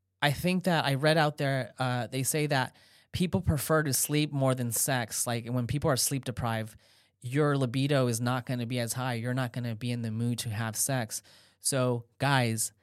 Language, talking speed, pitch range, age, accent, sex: English, 215 wpm, 115-140 Hz, 20-39, American, male